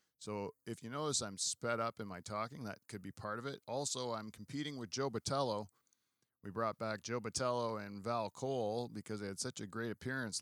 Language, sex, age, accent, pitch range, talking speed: English, male, 40-59, American, 100-125 Hz, 215 wpm